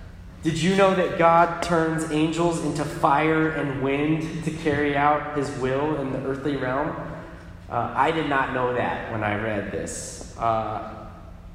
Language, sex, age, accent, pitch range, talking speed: English, male, 20-39, American, 105-155 Hz, 160 wpm